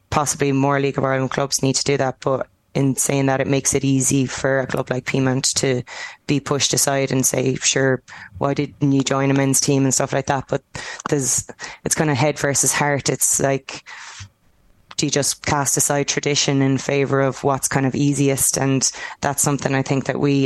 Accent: Irish